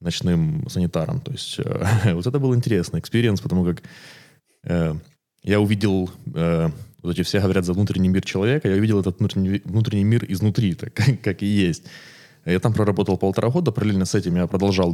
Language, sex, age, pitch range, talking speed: Ukrainian, male, 20-39, 85-115 Hz, 180 wpm